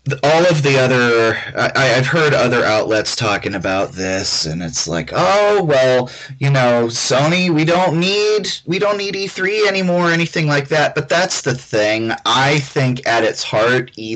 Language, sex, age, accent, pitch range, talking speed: English, male, 30-49, American, 105-140 Hz, 180 wpm